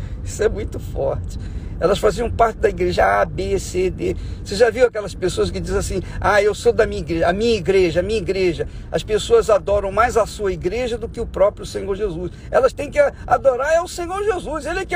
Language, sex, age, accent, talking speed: Portuguese, male, 50-69, Brazilian, 225 wpm